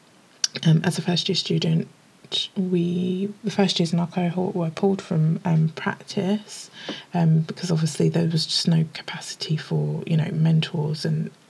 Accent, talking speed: British, 160 wpm